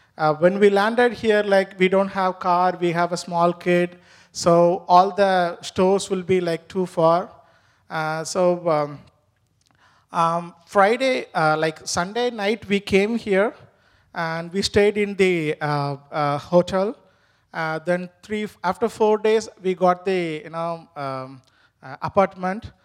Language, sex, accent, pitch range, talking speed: English, male, Indian, 165-200 Hz, 155 wpm